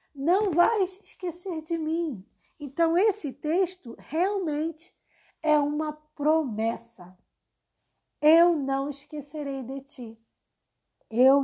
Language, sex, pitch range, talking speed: Portuguese, female, 225-300 Hz, 95 wpm